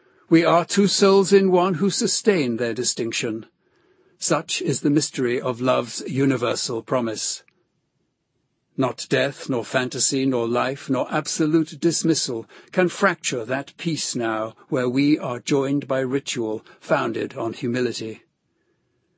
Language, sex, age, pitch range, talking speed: English, male, 60-79, 125-165 Hz, 130 wpm